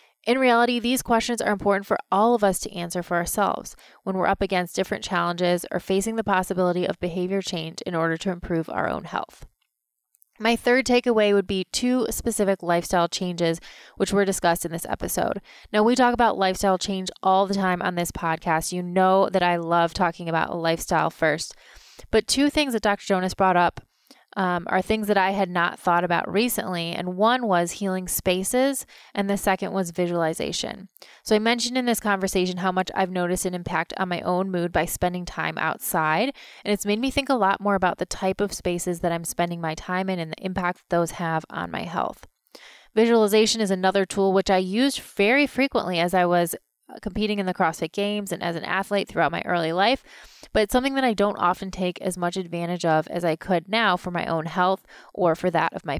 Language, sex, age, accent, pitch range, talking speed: English, female, 20-39, American, 175-210 Hz, 210 wpm